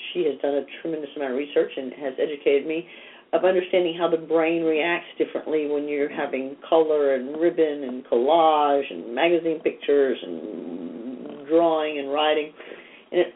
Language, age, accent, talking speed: English, 50-69, American, 160 wpm